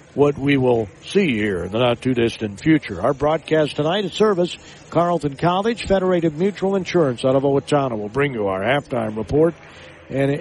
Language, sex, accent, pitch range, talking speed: English, male, American, 125-170 Hz, 165 wpm